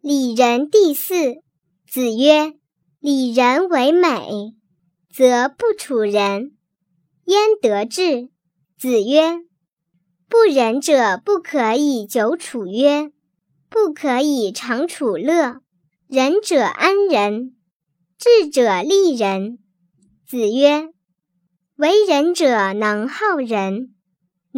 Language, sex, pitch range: Chinese, male, 200-330 Hz